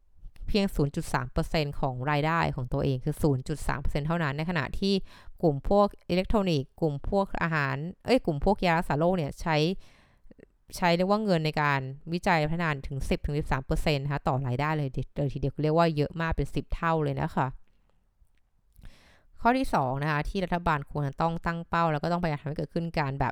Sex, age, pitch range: female, 20-39, 140-180 Hz